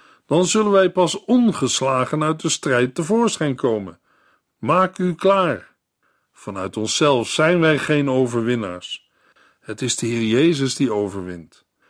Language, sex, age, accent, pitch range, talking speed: Dutch, male, 50-69, Dutch, 125-180 Hz, 130 wpm